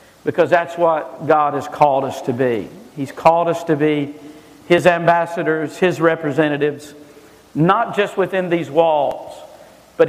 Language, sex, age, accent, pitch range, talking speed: English, male, 50-69, American, 160-200 Hz, 145 wpm